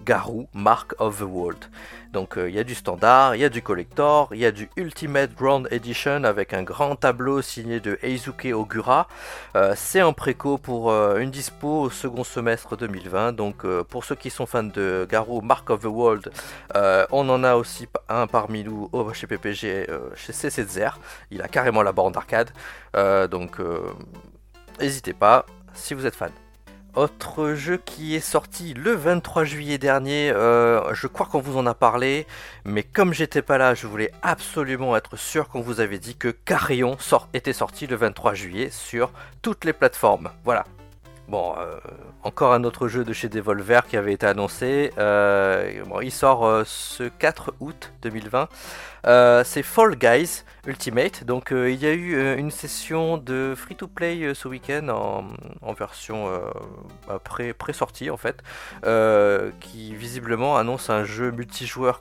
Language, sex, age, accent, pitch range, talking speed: French, male, 40-59, French, 110-140 Hz, 175 wpm